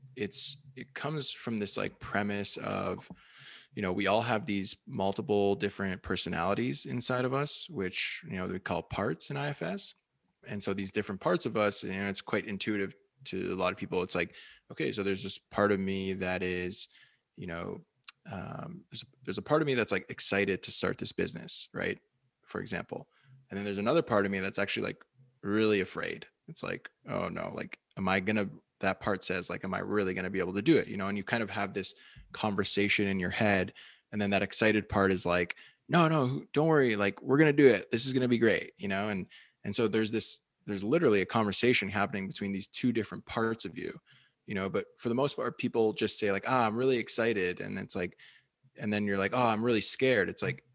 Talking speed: 225 wpm